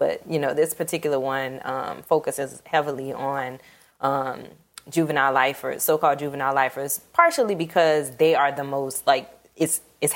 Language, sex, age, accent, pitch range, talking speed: English, female, 20-39, American, 145-185 Hz, 150 wpm